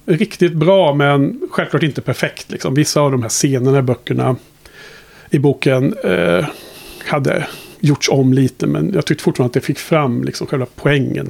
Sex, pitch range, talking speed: male, 135-175 Hz, 170 wpm